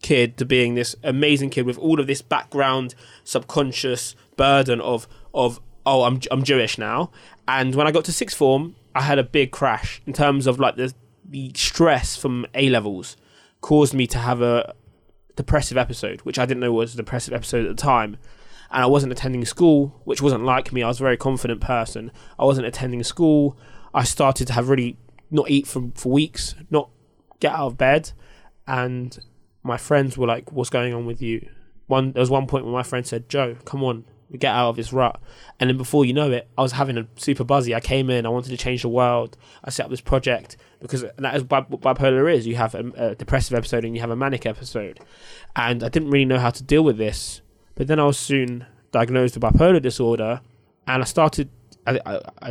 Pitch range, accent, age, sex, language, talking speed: 115-135 Hz, British, 20-39, male, English, 215 wpm